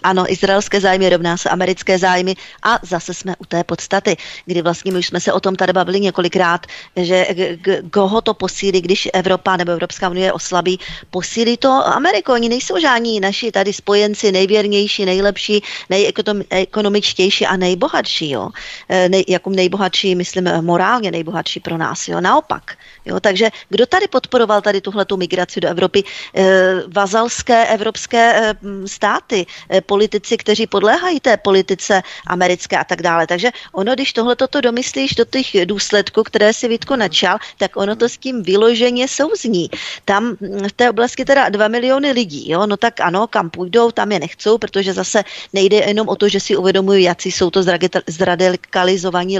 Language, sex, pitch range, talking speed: Czech, female, 185-215 Hz, 170 wpm